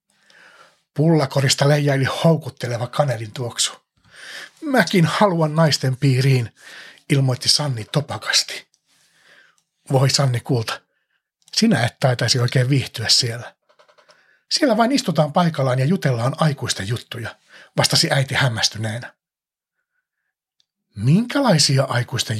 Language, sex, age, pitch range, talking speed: Finnish, male, 60-79, 120-155 Hz, 90 wpm